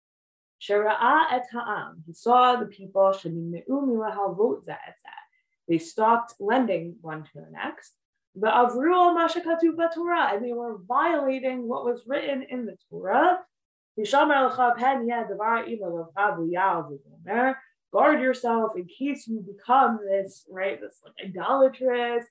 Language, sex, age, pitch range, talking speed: English, female, 20-39, 210-285 Hz, 110 wpm